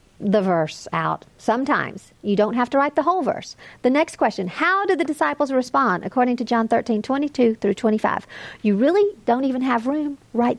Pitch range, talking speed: 195-245 Hz, 195 wpm